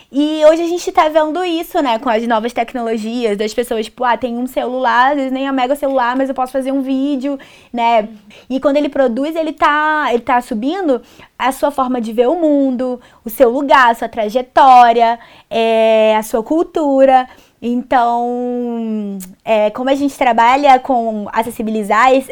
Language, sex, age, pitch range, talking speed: Portuguese, female, 20-39, 215-265 Hz, 170 wpm